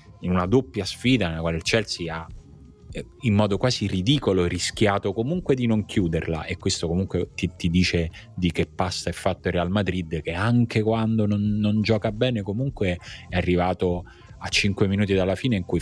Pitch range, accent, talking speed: 85-110 Hz, native, 185 wpm